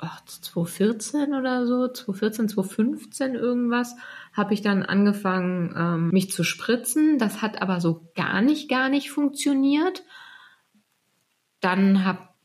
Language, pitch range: German, 190-245 Hz